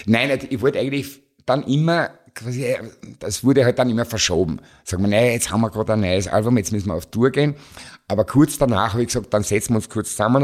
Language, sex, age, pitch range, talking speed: German, male, 50-69, 90-115 Hz, 235 wpm